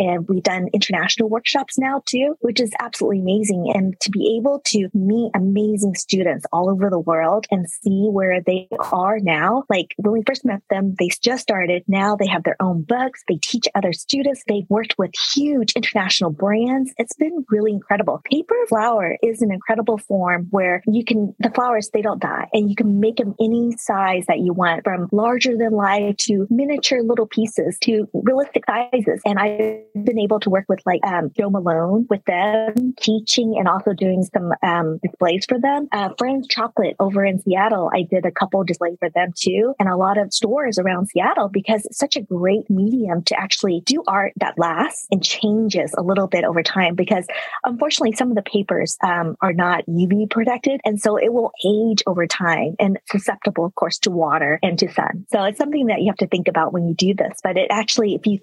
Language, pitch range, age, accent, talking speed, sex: English, 185-230 Hz, 20-39, American, 205 wpm, female